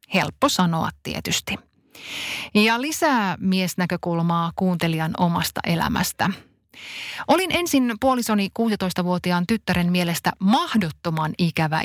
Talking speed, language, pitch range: 85 wpm, Finnish, 165-225 Hz